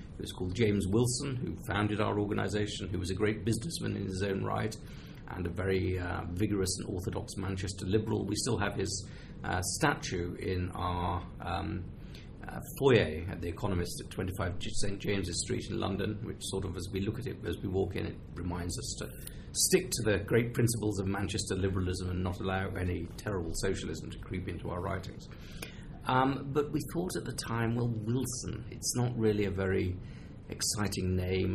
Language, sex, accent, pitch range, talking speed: English, male, British, 95-110 Hz, 185 wpm